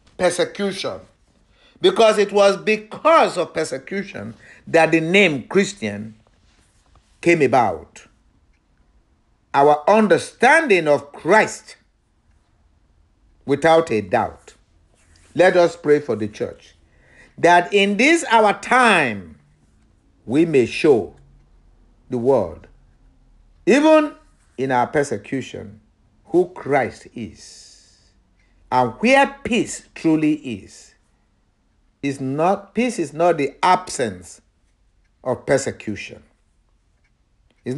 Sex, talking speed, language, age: male, 90 wpm, English, 50-69